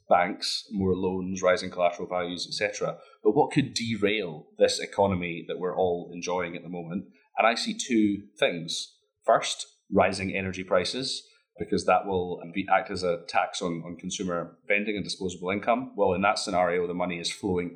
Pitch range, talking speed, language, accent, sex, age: 90-105 Hz, 175 wpm, English, British, male, 30-49